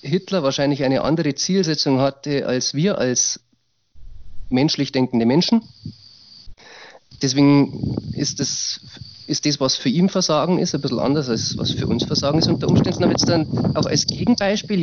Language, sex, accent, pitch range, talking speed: German, male, German, 125-165 Hz, 160 wpm